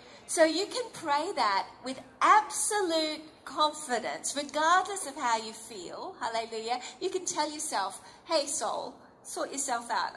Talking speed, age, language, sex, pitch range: 135 wpm, 40-59, English, female, 275-355 Hz